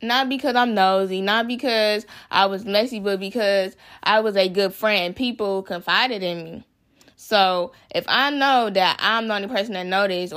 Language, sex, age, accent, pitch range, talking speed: English, female, 20-39, American, 195-245 Hz, 180 wpm